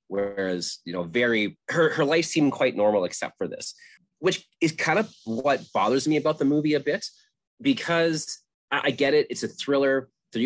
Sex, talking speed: male, 195 wpm